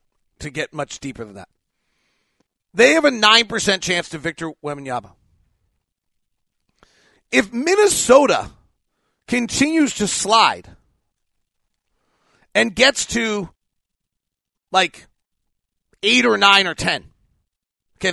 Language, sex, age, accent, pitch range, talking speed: English, male, 40-59, American, 155-230 Hz, 95 wpm